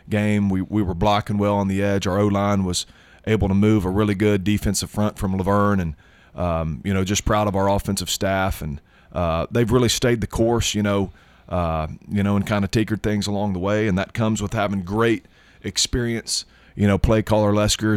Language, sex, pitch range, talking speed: English, male, 95-110 Hz, 215 wpm